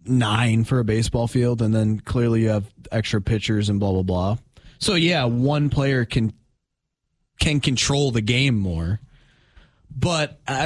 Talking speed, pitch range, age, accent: 160 wpm, 120-145 Hz, 20-39, American